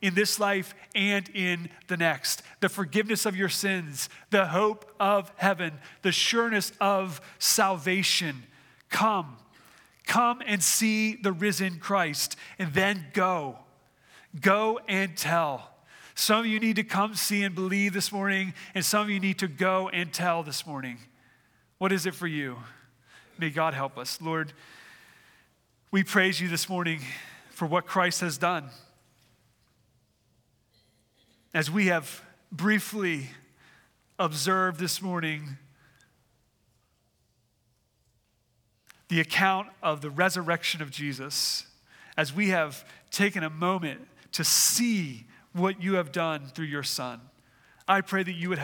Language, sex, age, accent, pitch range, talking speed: English, male, 30-49, American, 145-190 Hz, 135 wpm